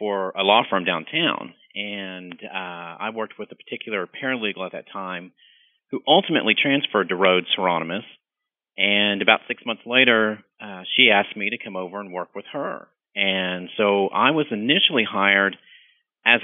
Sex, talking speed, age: male, 165 wpm, 40-59